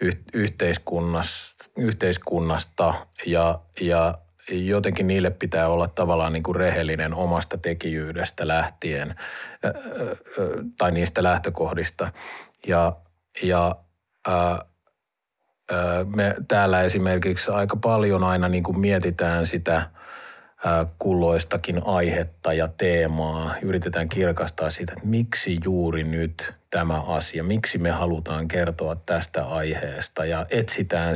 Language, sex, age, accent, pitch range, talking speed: Finnish, male, 30-49, native, 85-100 Hz, 105 wpm